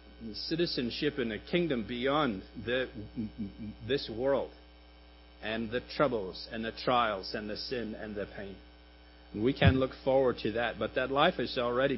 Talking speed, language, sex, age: 150 wpm, English, male, 50-69